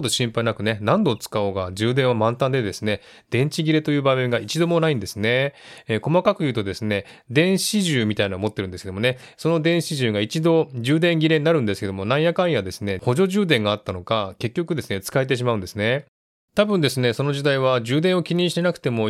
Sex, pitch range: male, 105-155 Hz